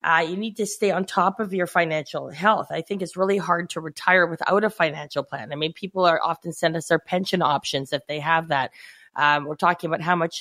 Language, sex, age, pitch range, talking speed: English, female, 20-39, 160-185 Hz, 240 wpm